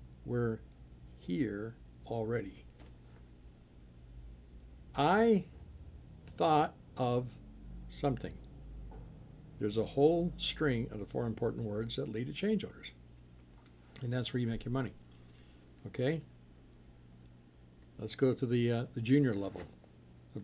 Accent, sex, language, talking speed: American, male, English, 110 wpm